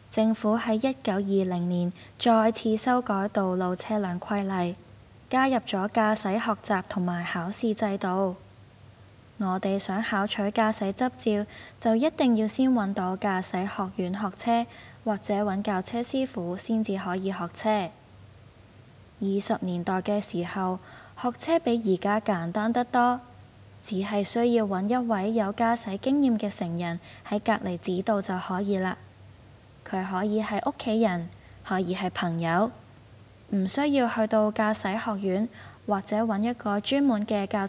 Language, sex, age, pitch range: Chinese, female, 10-29, 180-220 Hz